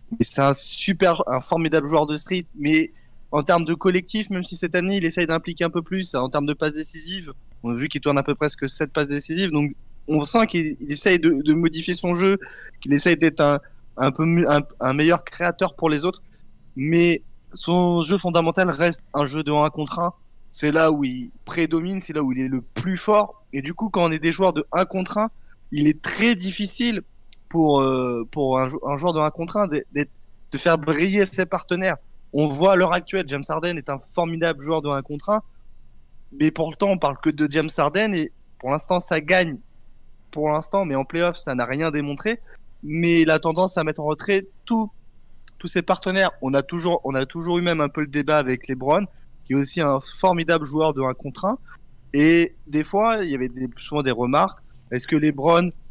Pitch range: 145-180 Hz